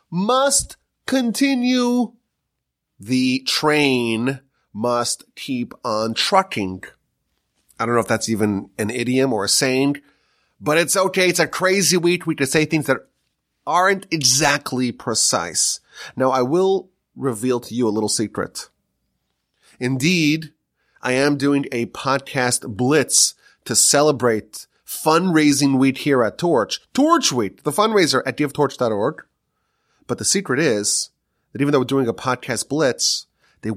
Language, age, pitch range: English, 30-49, 125-175 Hz